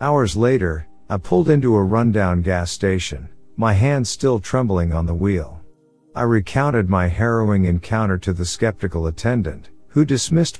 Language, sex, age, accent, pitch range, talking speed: English, male, 50-69, American, 90-115 Hz, 155 wpm